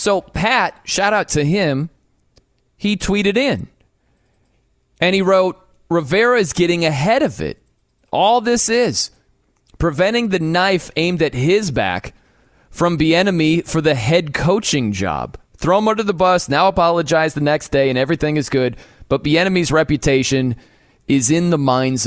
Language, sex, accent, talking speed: English, male, American, 150 wpm